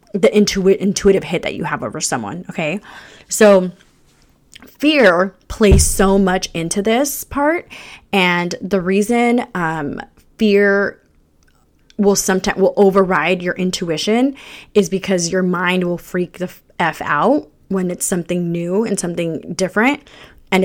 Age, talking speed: 20-39, 135 wpm